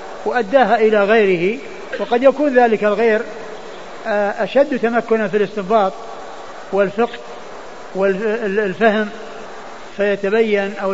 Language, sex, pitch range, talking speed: Arabic, male, 200-230 Hz, 80 wpm